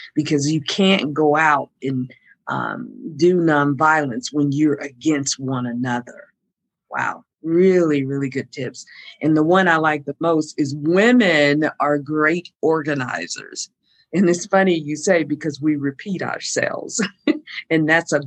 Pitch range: 140-170 Hz